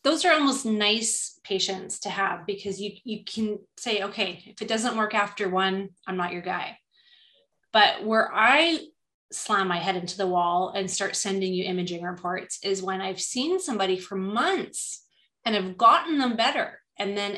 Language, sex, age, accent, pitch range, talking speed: English, female, 30-49, American, 190-225 Hz, 180 wpm